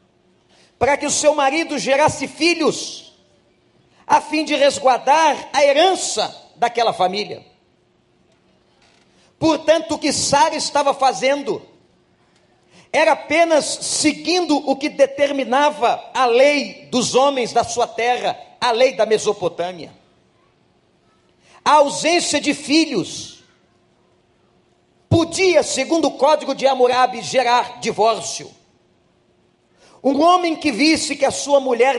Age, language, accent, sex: 40-59, Portuguese, Brazilian, male